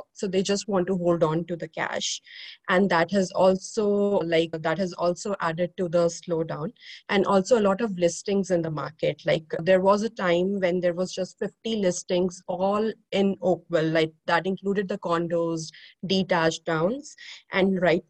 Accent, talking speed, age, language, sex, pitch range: Indian, 180 wpm, 30-49, English, female, 175-205 Hz